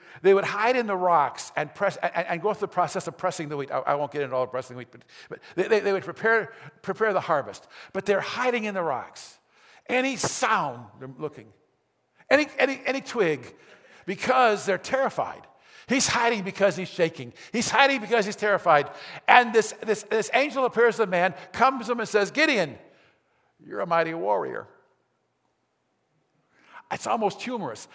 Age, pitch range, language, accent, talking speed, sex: 50-69, 185-245 Hz, English, American, 185 wpm, male